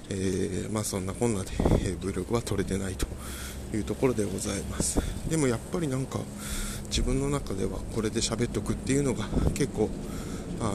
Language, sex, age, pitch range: Japanese, male, 20-39, 100-120 Hz